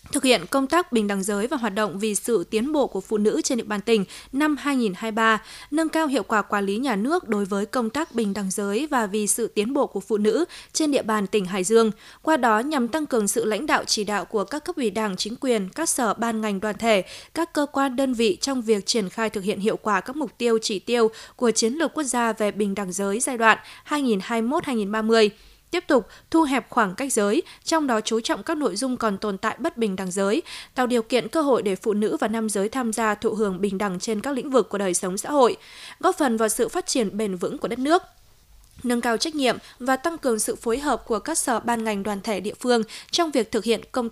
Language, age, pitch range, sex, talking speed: Vietnamese, 20-39, 215-270 Hz, female, 255 wpm